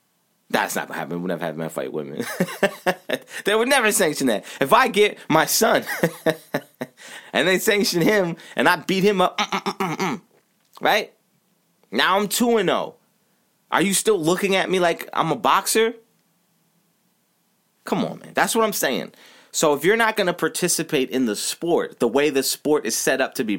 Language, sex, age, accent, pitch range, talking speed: English, male, 30-49, American, 155-205 Hz, 185 wpm